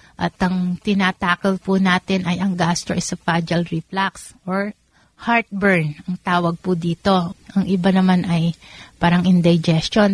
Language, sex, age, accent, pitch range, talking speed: Filipino, female, 30-49, native, 175-200 Hz, 125 wpm